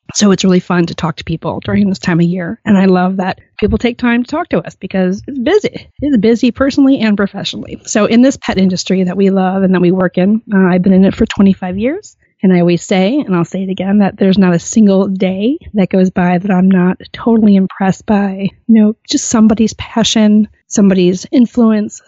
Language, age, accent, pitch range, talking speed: English, 30-49, American, 190-220 Hz, 230 wpm